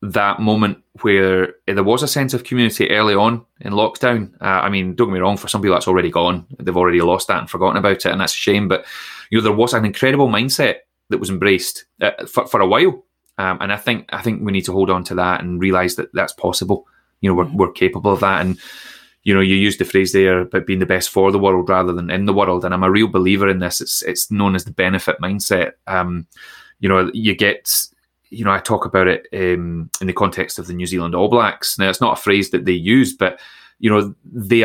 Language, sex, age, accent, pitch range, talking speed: English, male, 20-39, British, 90-115 Hz, 255 wpm